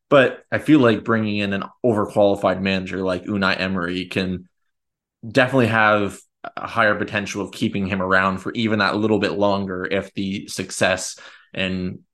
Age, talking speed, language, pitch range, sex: 20-39, 160 wpm, English, 95-105 Hz, male